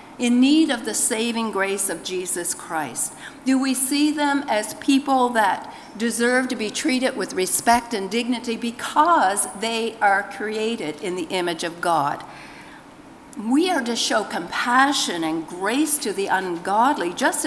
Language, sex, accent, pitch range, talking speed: English, female, American, 205-290 Hz, 150 wpm